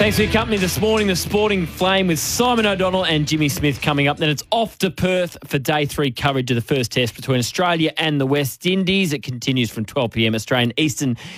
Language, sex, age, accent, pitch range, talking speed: English, male, 20-39, Australian, 125-170 Hz, 220 wpm